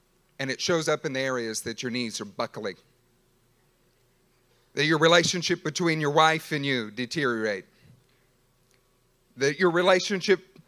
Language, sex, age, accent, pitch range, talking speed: English, male, 40-59, American, 125-180 Hz, 135 wpm